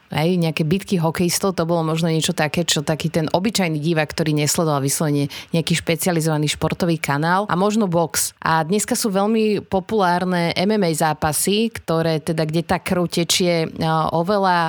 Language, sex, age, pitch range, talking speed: Slovak, female, 30-49, 165-200 Hz, 155 wpm